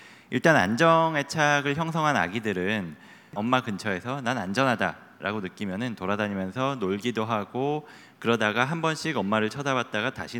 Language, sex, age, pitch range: Korean, male, 30-49, 105-150 Hz